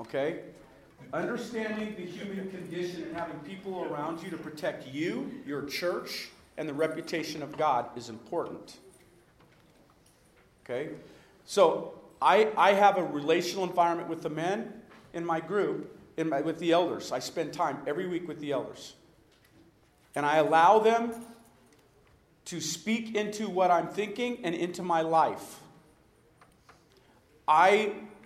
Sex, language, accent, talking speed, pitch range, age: male, English, American, 135 wpm, 155-190 Hz, 40-59